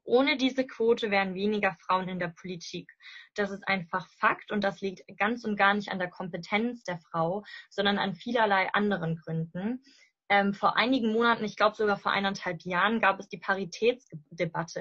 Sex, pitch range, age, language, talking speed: female, 180-210 Hz, 20-39, German, 180 wpm